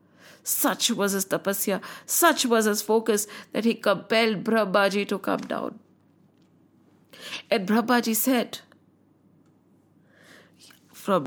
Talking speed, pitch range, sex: 100 wpm, 210-280 Hz, female